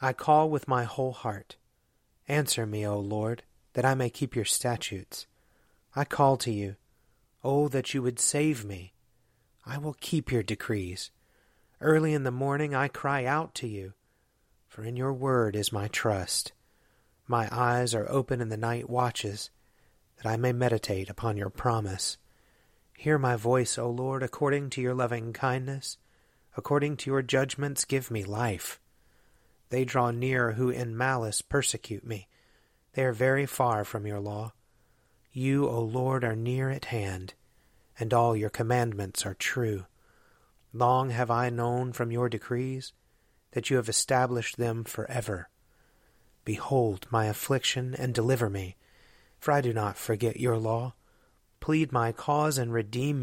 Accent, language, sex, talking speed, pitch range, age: American, English, male, 155 wpm, 110-130 Hz, 30-49